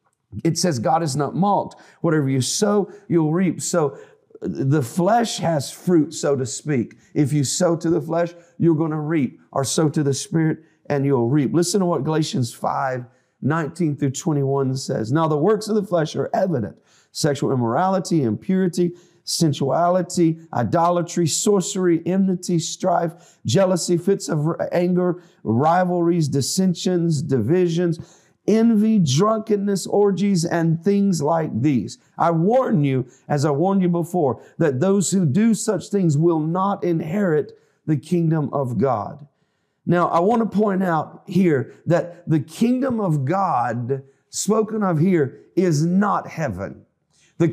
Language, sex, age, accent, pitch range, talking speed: English, male, 40-59, American, 150-185 Hz, 145 wpm